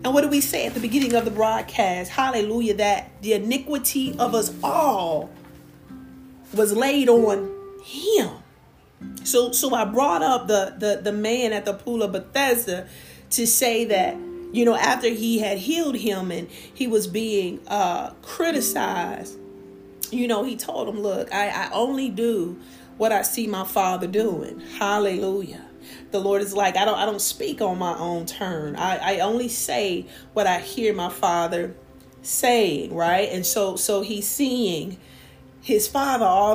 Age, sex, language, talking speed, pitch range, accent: 40-59, female, English, 165 wpm, 180-230 Hz, American